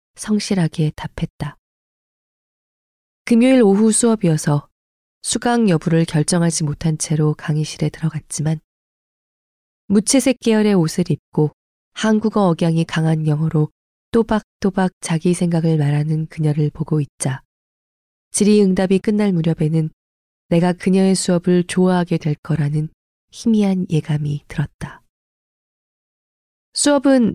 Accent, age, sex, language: native, 20-39, female, Korean